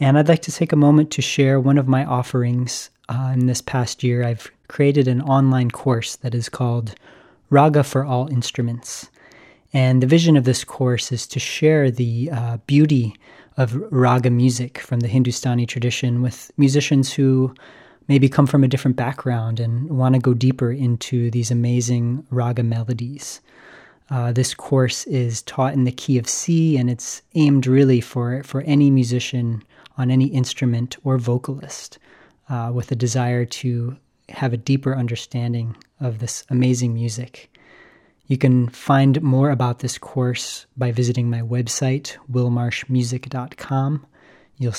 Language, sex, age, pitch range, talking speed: English, male, 30-49, 120-135 Hz, 155 wpm